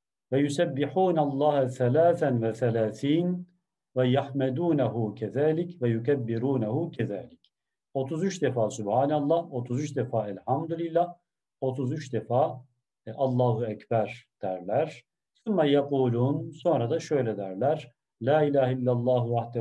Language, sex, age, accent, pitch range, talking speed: Turkish, male, 50-69, native, 120-160 Hz, 85 wpm